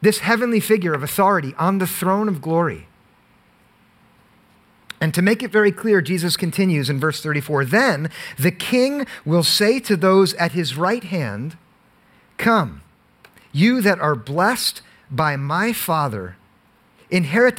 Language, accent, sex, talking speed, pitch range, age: English, American, male, 140 wpm, 165-215 Hz, 50-69